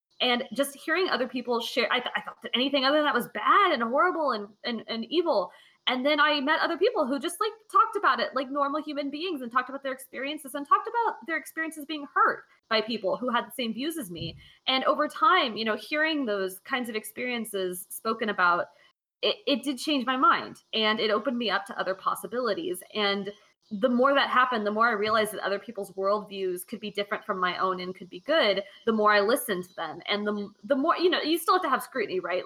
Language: English